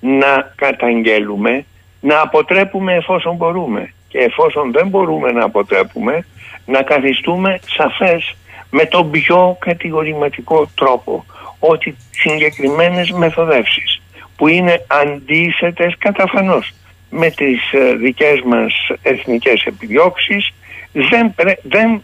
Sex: male